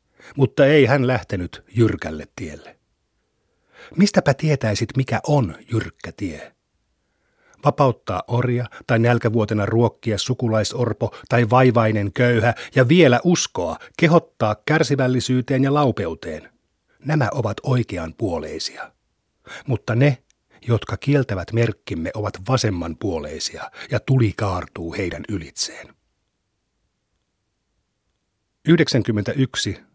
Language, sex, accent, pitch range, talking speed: Finnish, male, native, 100-130 Hz, 90 wpm